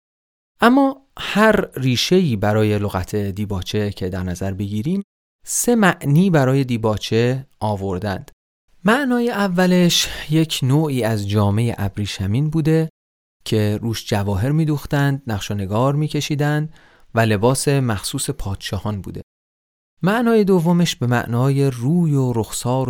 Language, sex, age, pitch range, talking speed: Persian, male, 30-49, 105-150 Hz, 110 wpm